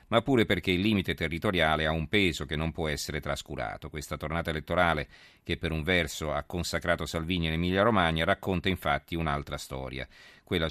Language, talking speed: Italian, 180 wpm